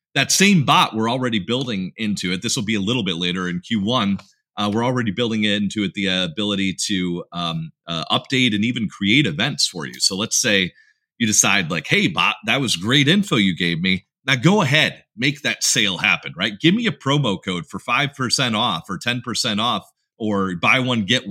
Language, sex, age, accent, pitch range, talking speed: English, male, 30-49, American, 100-145 Hz, 210 wpm